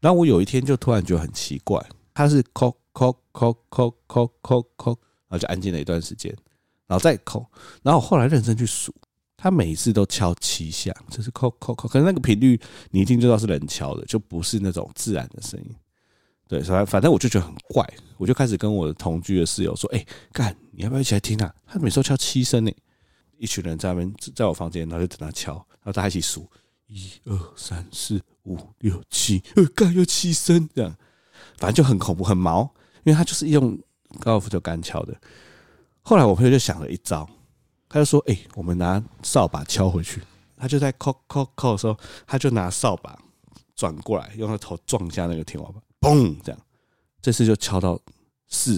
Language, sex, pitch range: Chinese, male, 90-125 Hz